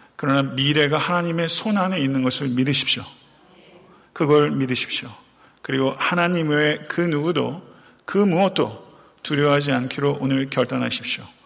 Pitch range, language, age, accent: 130-165 Hz, Korean, 40-59, native